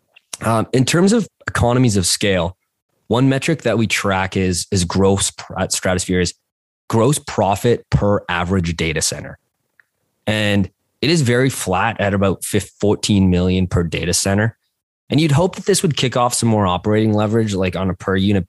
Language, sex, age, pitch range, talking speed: English, male, 20-39, 90-115 Hz, 170 wpm